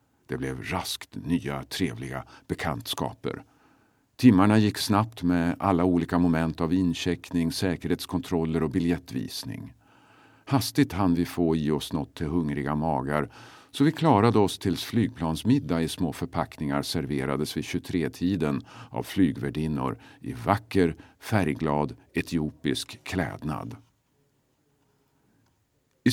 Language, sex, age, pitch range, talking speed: Swedish, male, 50-69, 80-115 Hz, 110 wpm